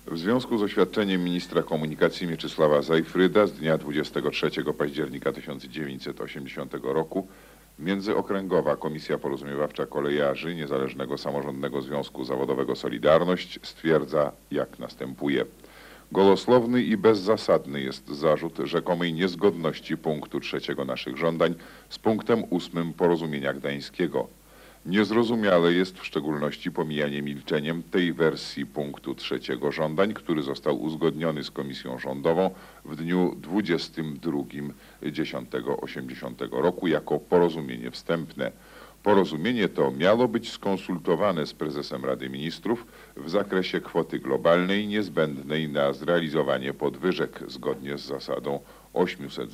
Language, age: Polish, 50-69